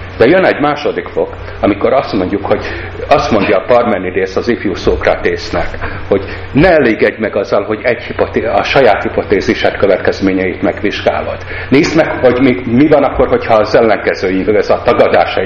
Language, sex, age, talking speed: Hungarian, male, 60-79, 155 wpm